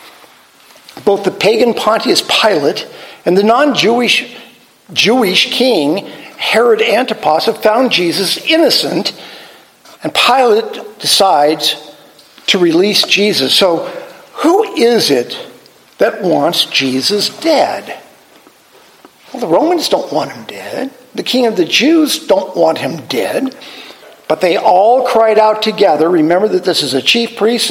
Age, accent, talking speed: 50-69, American, 130 wpm